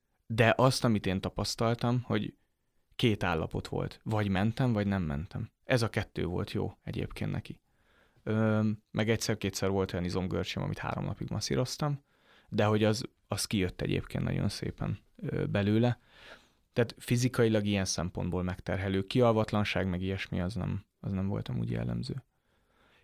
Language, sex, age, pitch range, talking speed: Hungarian, male, 30-49, 95-115 Hz, 140 wpm